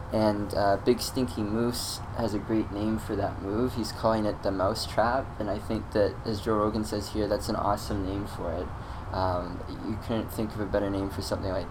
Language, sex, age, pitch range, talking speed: English, male, 20-39, 100-110 Hz, 225 wpm